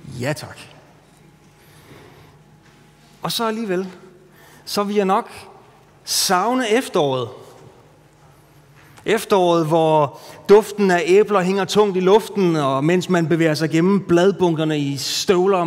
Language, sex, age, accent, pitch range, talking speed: Danish, male, 30-49, native, 145-175 Hz, 110 wpm